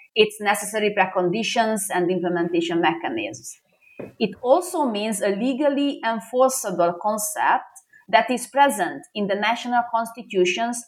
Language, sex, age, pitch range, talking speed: English, female, 30-49, 195-280 Hz, 110 wpm